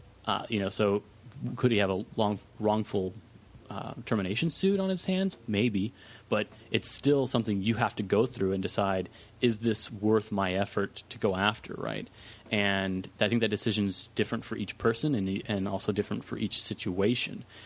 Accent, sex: American, male